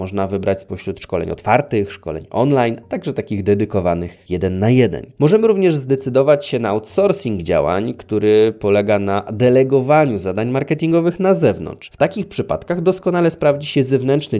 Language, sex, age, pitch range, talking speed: Polish, male, 20-39, 100-140 Hz, 150 wpm